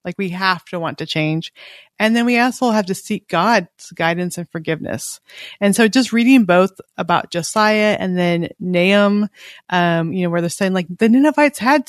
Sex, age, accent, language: female, 30-49, American, English